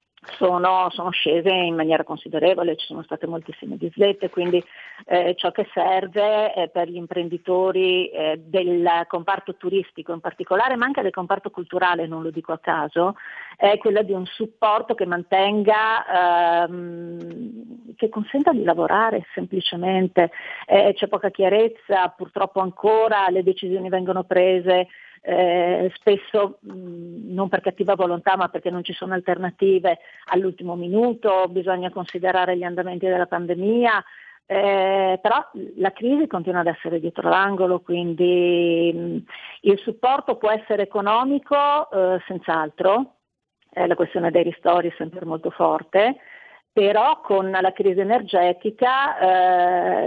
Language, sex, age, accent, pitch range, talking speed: Italian, female, 40-59, native, 175-200 Hz, 130 wpm